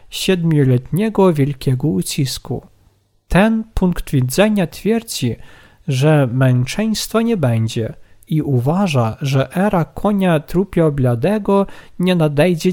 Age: 50-69